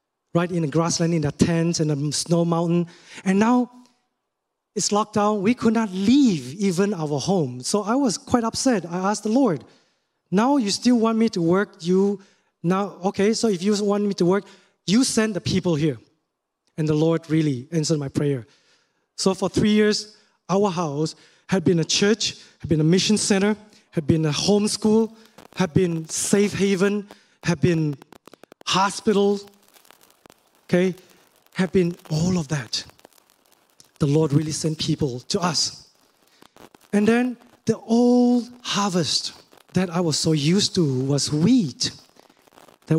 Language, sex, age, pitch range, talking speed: English, male, 20-39, 160-210 Hz, 160 wpm